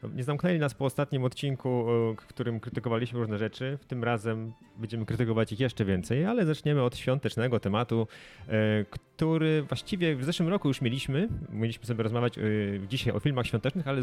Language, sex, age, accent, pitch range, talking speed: Polish, male, 30-49, native, 115-145 Hz, 165 wpm